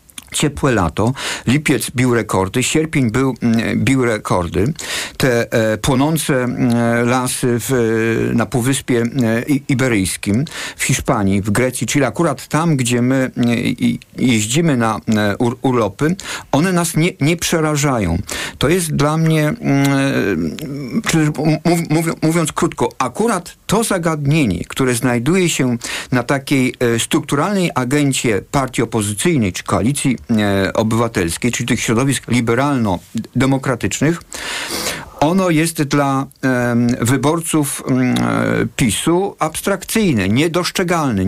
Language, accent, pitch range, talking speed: Polish, native, 115-155 Hz, 100 wpm